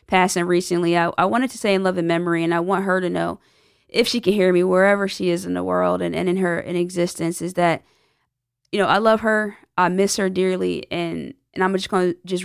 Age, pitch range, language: 20-39, 170-190 Hz, English